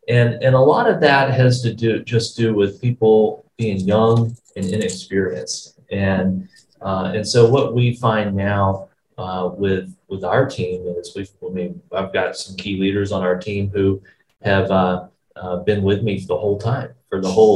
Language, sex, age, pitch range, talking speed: Vietnamese, male, 30-49, 95-115 Hz, 190 wpm